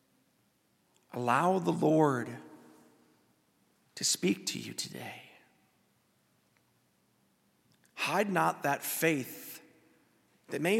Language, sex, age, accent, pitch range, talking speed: English, male, 40-59, American, 155-195 Hz, 80 wpm